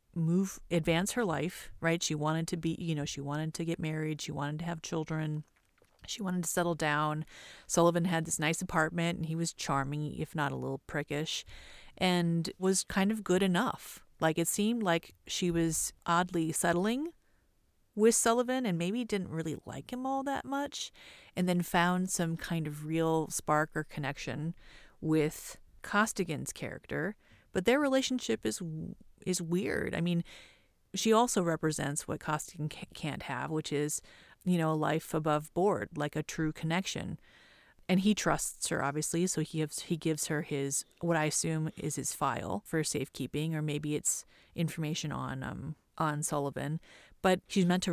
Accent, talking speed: American, 170 wpm